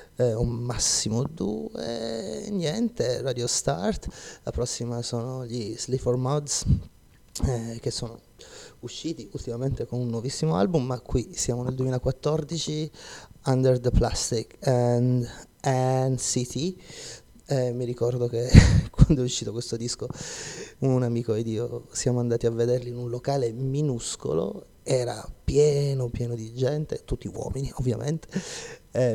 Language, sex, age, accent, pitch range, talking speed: Italian, male, 30-49, native, 120-130 Hz, 130 wpm